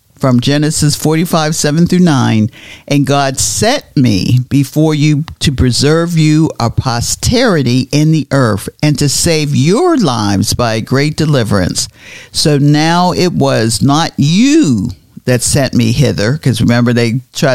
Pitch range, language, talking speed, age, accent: 115-150 Hz, English, 145 wpm, 50-69, American